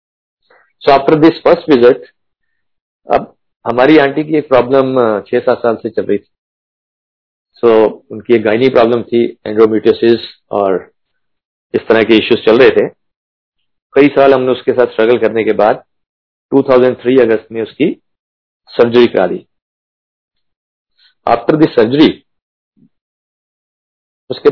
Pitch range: 110-155 Hz